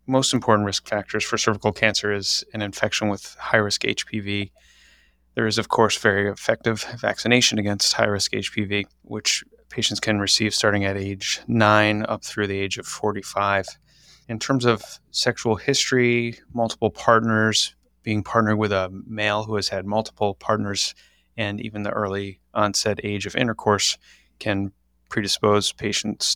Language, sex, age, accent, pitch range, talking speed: English, male, 30-49, American, 100-110 Hz, 150 wpm